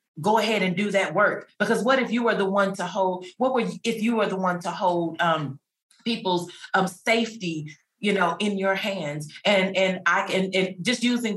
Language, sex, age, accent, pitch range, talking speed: English, female, 30-49, American, 180-225 Hz, 215 wpm